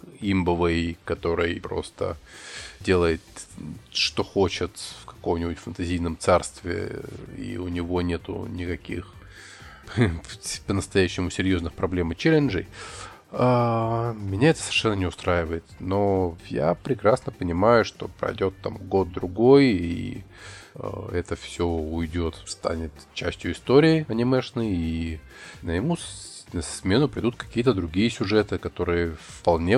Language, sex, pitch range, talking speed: Russian, male, 85-105 Hz, 105 wpm